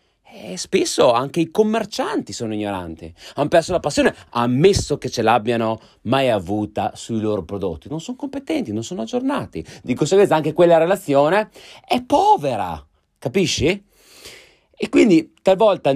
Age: 30-49